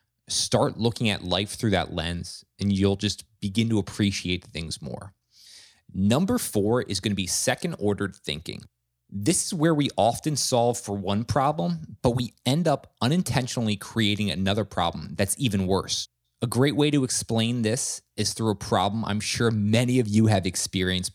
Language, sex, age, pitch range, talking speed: English, male, 20-39, 100-125 Hz, 165 wpm